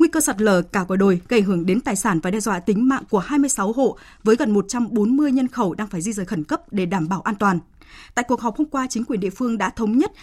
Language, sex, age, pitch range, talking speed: Vietnamese, female, 20-39, 200-270 Hz, 280 wpm